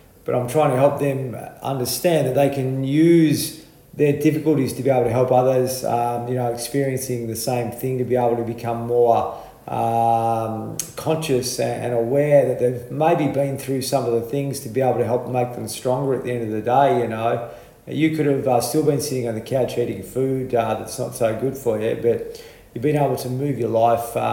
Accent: Australian